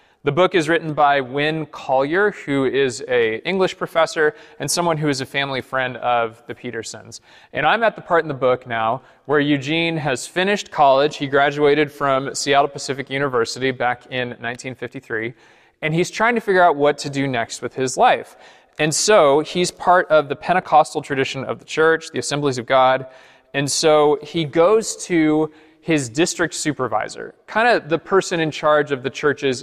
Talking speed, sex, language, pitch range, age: 180 wpm, male, English, 135-165 Hz, 20-39